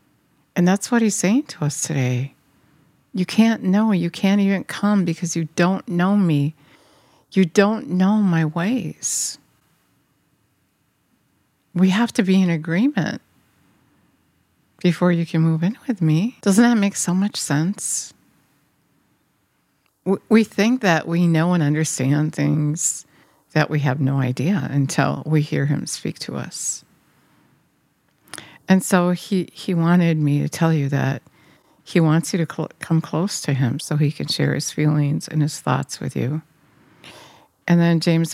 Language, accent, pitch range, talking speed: English, American, 145-175 Hz, 150 wpm